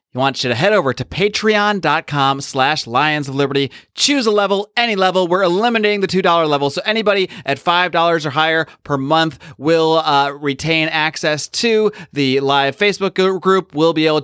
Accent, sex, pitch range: American, male, 130-170 Hz